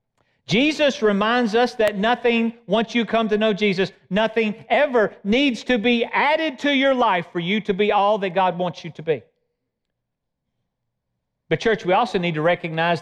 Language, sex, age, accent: English, male, 40-59, American